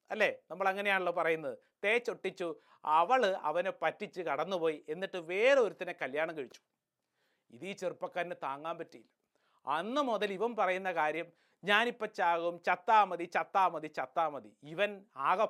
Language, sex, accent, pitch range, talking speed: English, male, Indian, 180-245 Hz, 115 wpm